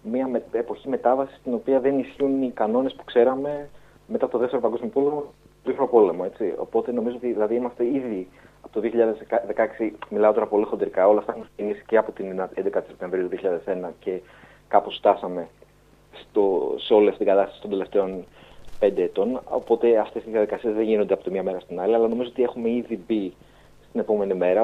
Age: 30-49